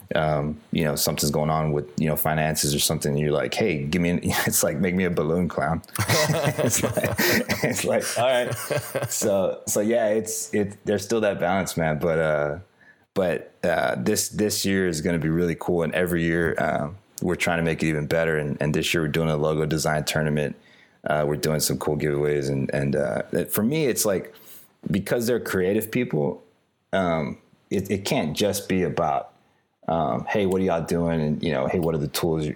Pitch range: 75-90 Hz